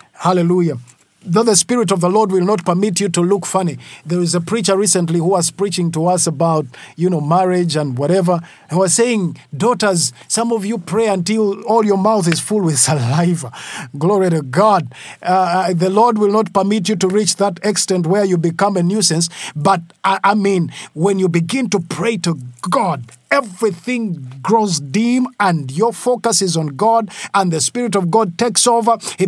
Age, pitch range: 50-69, 170-220 Hz